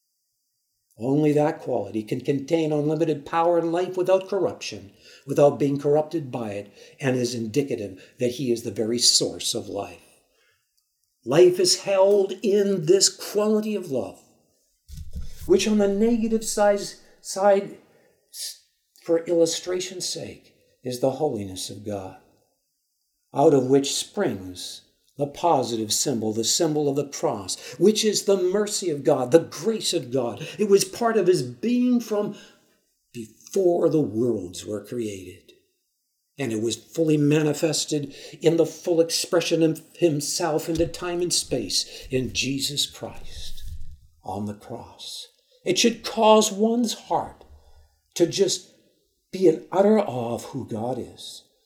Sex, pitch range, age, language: male, 120-195 Hz, 60-79, English